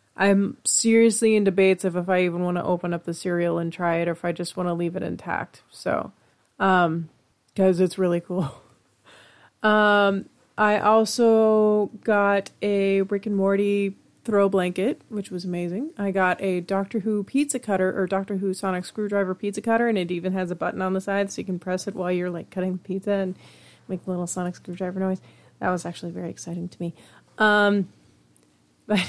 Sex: female